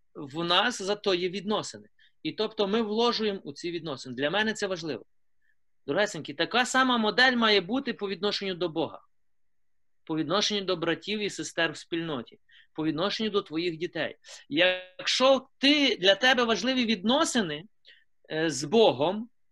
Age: 30-49